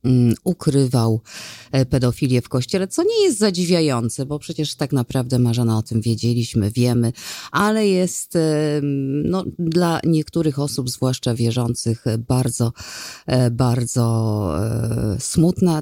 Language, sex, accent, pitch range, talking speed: Polish, female, native, 125-155 Hz, 100 wpm